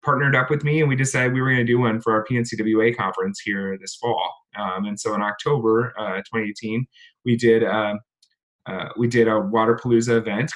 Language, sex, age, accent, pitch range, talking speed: English, male, 20-39, American, 110-130 Hz, 200 wpm